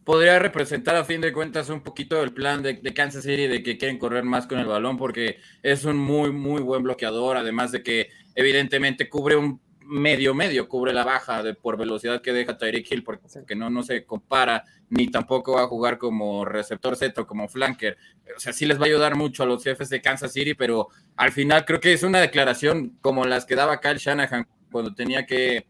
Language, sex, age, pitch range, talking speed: Spanish, male, 20-39, 125-150 Hz, 220 wpm